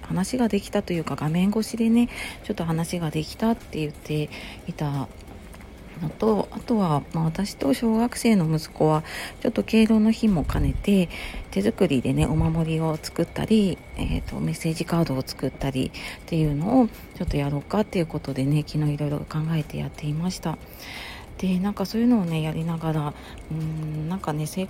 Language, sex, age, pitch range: Japanese, female, 40-59, 145-200 Hz